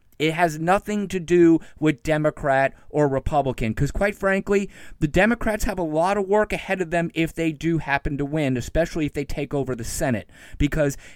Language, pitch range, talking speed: English, 145-200 Hz, 195 wpm